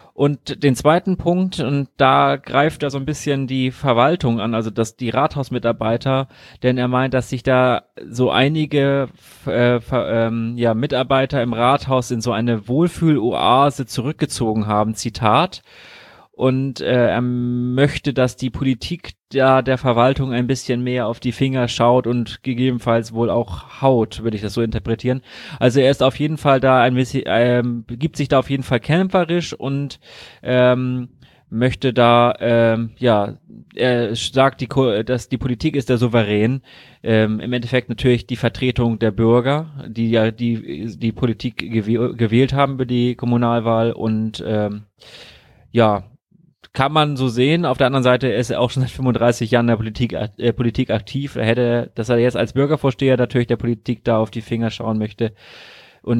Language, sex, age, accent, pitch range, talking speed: German, male, 30-49, German, 115-135 Hz, 170 wpm